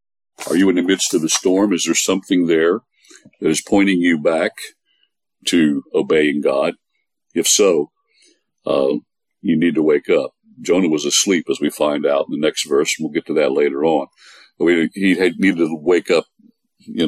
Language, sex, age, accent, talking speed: English, male, 60-79, American, 185 wpm